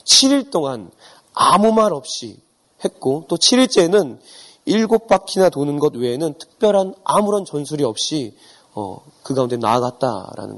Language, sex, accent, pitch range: Korean, male, native, 140-205 Hz